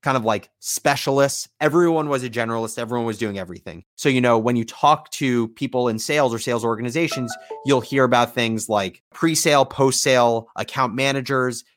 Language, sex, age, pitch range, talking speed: English, male, 30-49, 115-140 Hz, 185 wpm